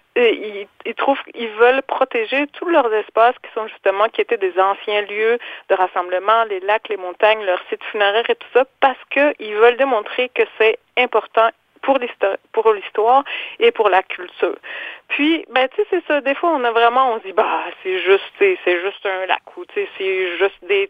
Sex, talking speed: female, 200 wpm